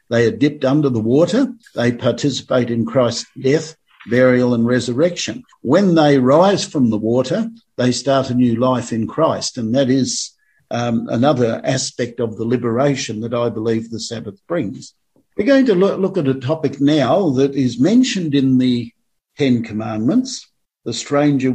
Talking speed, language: 165 wpm, English